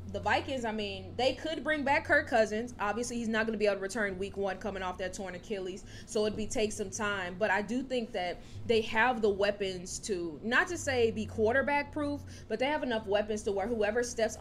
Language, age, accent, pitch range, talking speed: English, 20-39, American, 190-230 Hz, 235 wpm